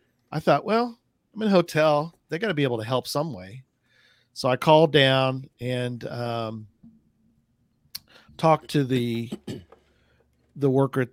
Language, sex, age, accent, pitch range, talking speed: English, male, 40-59, American, 120-150 Hz, 145 wpm